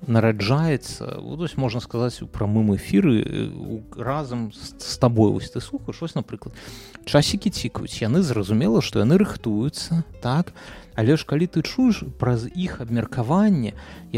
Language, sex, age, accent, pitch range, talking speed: Russian, male, 30-49, native, 110-160 Hz, 155 wpm